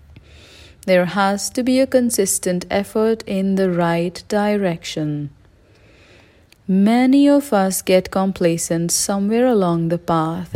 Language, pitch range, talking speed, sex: English, 160-215 Hz, 115 wpm, female